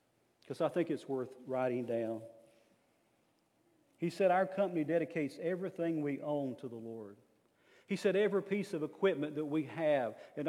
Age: 50-69